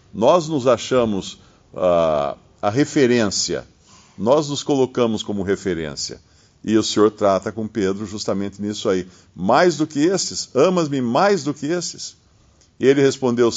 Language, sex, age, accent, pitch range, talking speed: Portuguese, male, 50-69, Brazilian, 110-155 Hz, 140 wpm